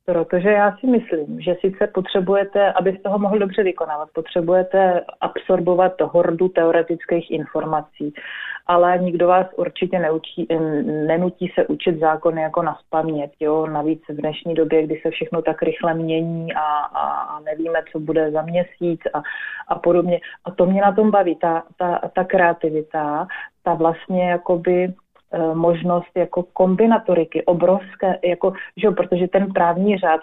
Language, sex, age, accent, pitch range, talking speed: Czech, female, 30-49, native, 160-185 Hz, 145 wpm